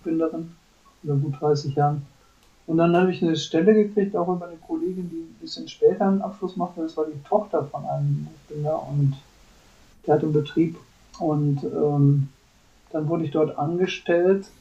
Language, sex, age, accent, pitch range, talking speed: German, male, 50-69, German, 145-180 Hz, 175 wpm